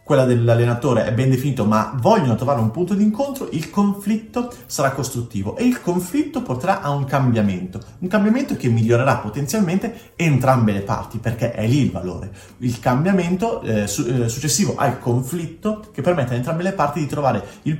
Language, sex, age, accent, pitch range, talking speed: Italian, male, 30-49, native, 115-175 Hz, 175 wpm